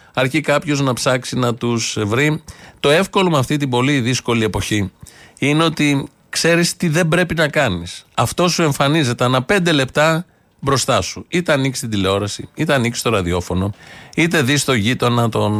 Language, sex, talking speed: Greek, male, 170 wpm